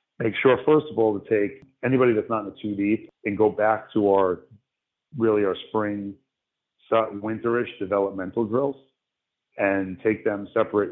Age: 40-59